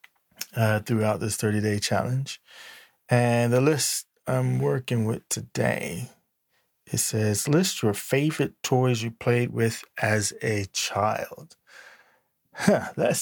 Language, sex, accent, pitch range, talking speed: English, male, American, 110-125 Hz, 115 wpm